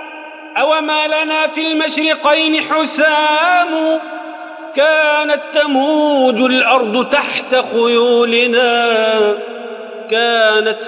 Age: 40-59